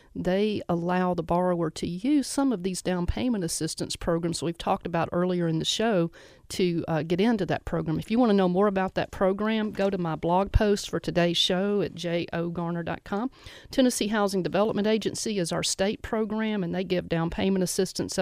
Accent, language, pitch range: American, English, 170-195 Hz